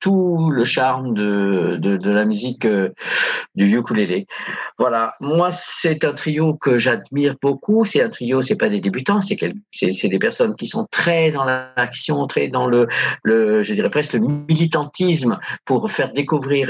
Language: French